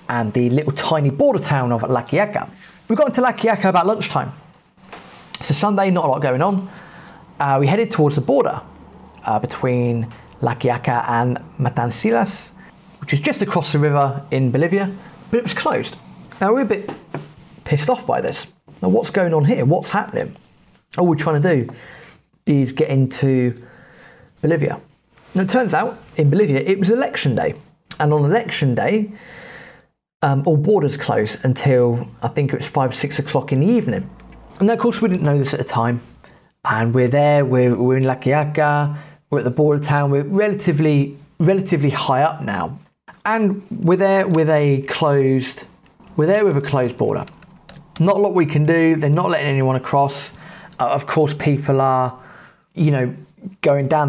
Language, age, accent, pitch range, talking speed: English, 30-49, British, 130-180 Hz, 175 wpm